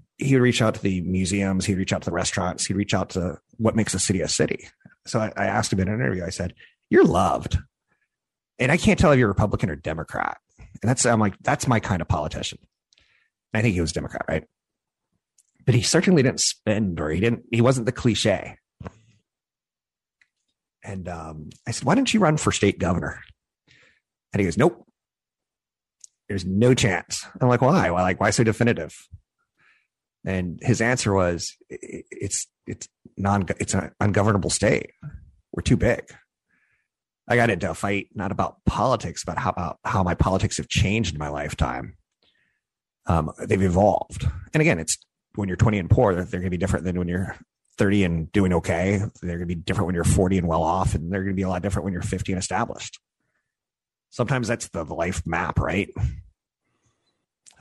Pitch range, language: 90-110 Hz, English